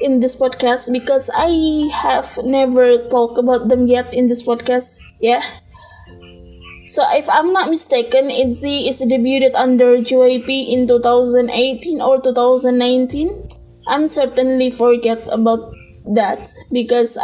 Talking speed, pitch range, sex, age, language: 120 wpm, 240-270 Hz, female, 20-39, Indonesian